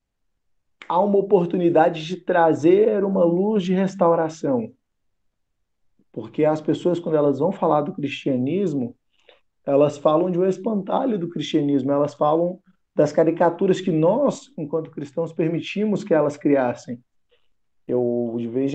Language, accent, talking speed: Portuguese, Brazilian, 130 wpm